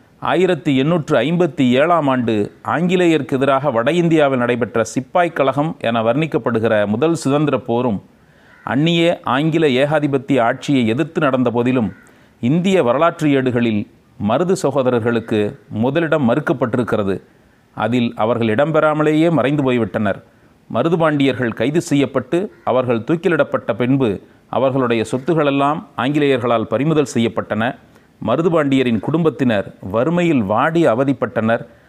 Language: Tamil